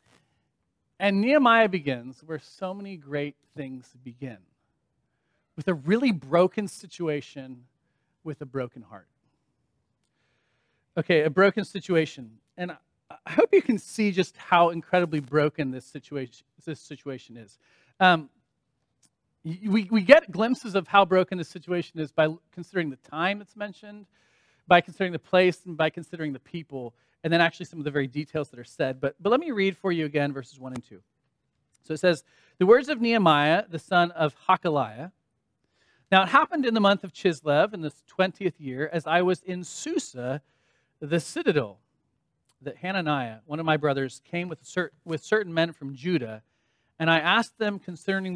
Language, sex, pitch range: English, male, 135-185 Hz